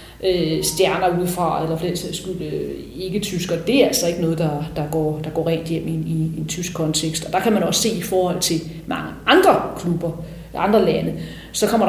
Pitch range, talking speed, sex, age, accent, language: 170-205 Hz, 200 wpm, female, 30-49, native, Danish